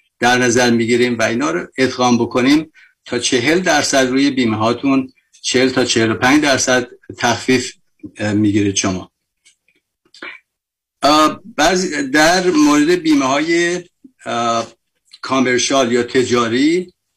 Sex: male